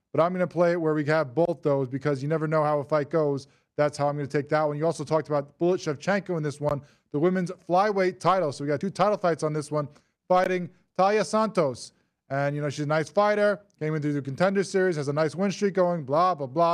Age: 20-39